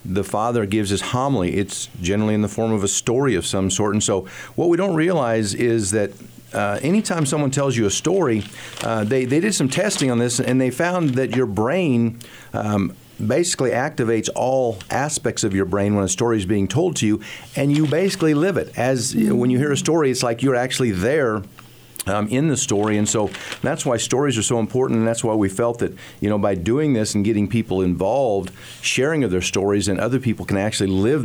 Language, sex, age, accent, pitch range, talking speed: English, male, 50-69, American, 105-130 Hz, 220 wpm